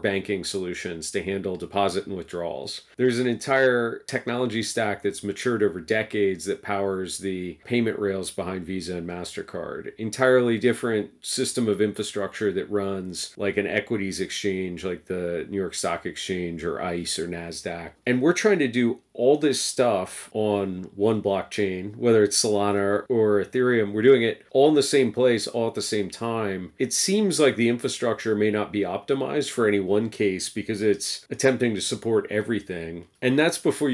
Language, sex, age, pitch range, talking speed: English, male, 40-59, 95-120 Hz, 170 wpm